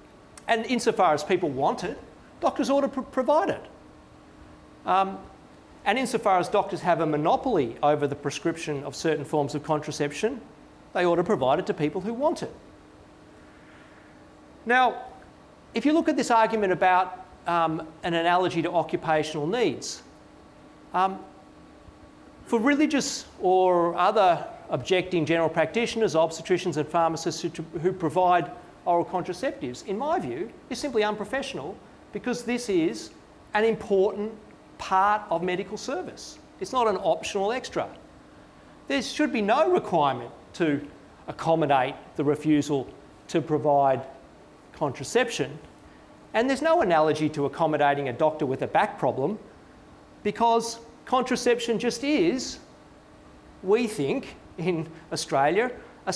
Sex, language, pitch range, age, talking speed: male, English, 160-230 Hz, 40-59, 130 wpm